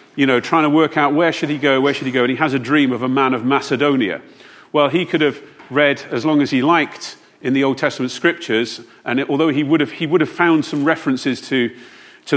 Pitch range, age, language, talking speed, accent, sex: 125-165 Hz, 40-59, English, 255 wpm, British, male